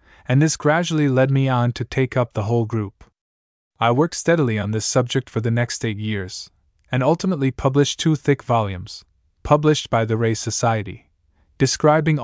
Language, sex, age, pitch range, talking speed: English, male, 20-39, 110-135 Hz, 170 wpm